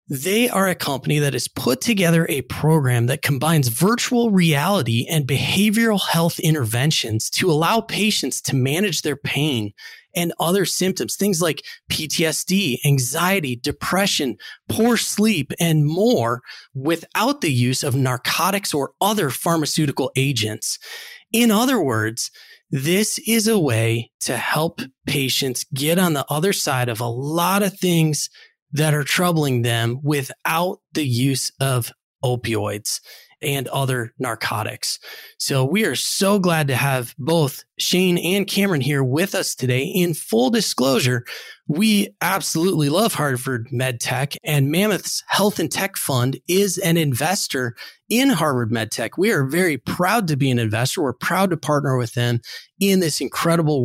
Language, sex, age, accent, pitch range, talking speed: English, male, 30-49, American, 130-185 Hz, 145 wpm